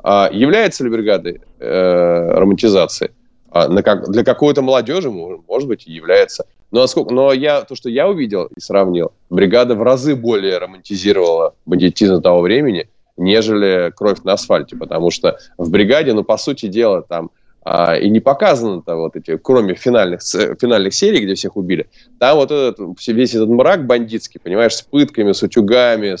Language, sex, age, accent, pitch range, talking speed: Russian, male, 20-39, native, 95-125 Hz, 165 wpm